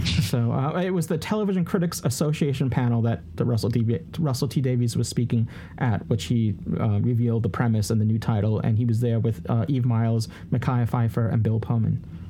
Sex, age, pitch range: male, 30-49, 115-155 Hz